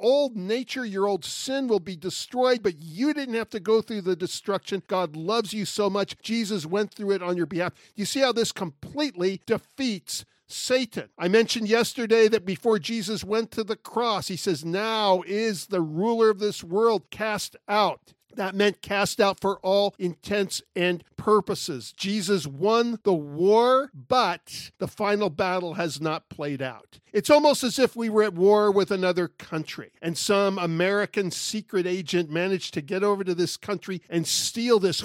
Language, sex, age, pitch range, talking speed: English, male, 50-69, 175-215 Hz, 180 wpm